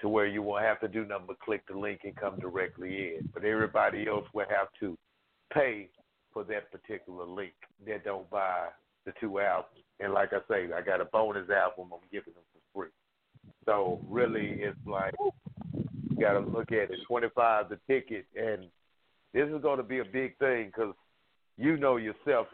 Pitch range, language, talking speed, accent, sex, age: 105-120 Hz, English, 195 wpm, American, male, 50-69